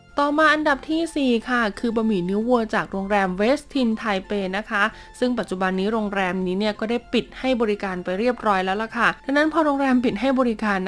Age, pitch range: 20-39, 195-245 Hz